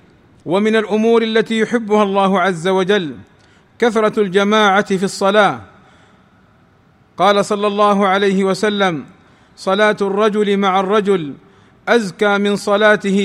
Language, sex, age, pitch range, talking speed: Arabic, male, 40-59, 190-215 Hz, 105 wpm